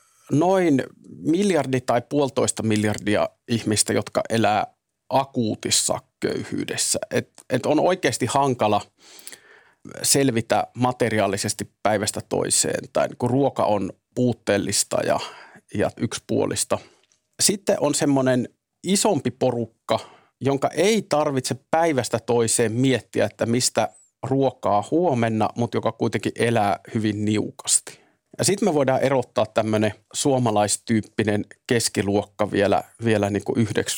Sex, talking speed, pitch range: male, 100 wpm, 110-135 Hz